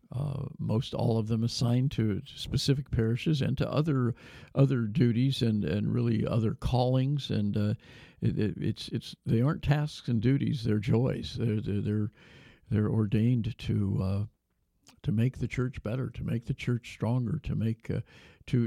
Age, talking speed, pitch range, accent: 50-69, 165 wpm, 110-135 Hz, American